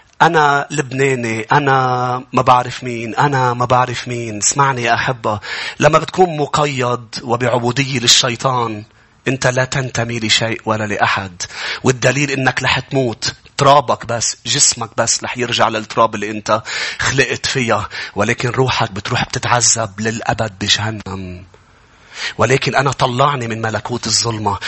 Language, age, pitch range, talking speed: English, 30-49, 110-135 Hz, 125 wpm